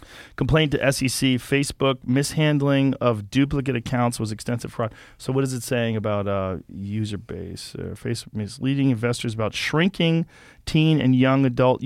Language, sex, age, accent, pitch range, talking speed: English, male, 40-59, American, 120-150 Hz, 150 wpm